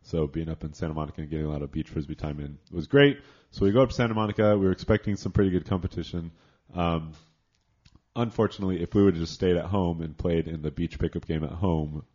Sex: male